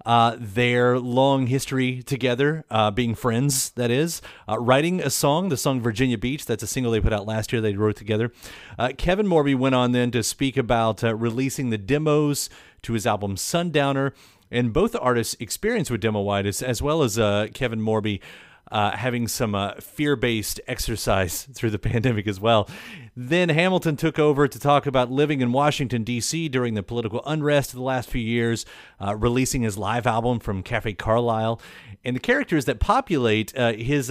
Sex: male